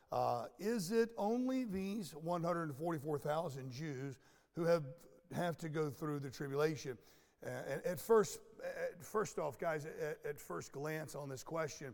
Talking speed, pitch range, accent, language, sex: 150 wpm, 140-170 Hz, American, English, male